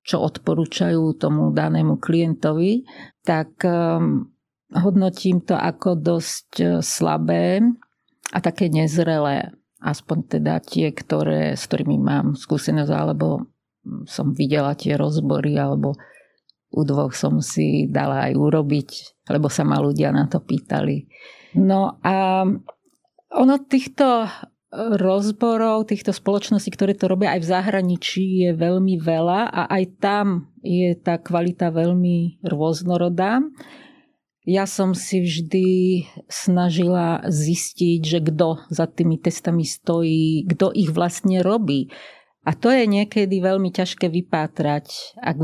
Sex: female